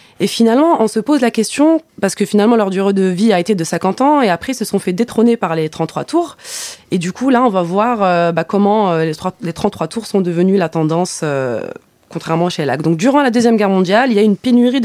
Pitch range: 180-225 Hz